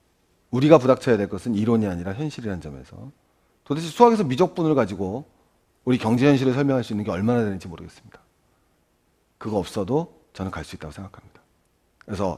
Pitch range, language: 90-145 Hz, Korean